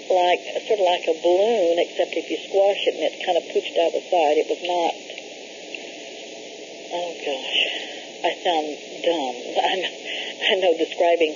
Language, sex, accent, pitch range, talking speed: English, female, American, 155-245 Hz, 170 wpm